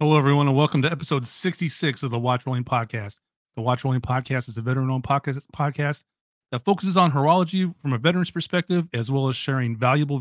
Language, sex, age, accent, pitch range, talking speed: English, male, 40-59, American, 125-150 Hz, 195 wpm